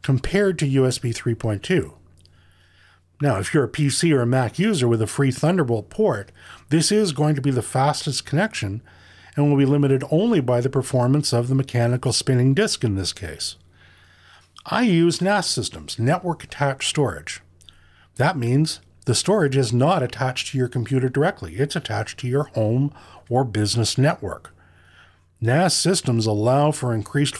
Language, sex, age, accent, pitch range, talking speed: English, male, 50-69, American, 100-145 Hz, 160 wpm